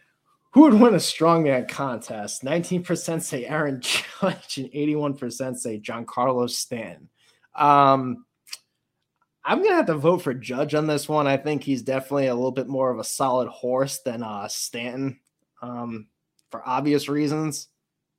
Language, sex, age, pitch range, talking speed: English, male, 20-39, 130-160 Hz, 150 wpm